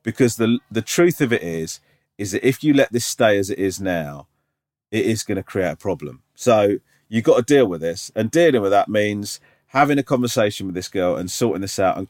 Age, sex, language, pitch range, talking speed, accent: 40-59, male, English, 95-120 Hz, 240 wpm, British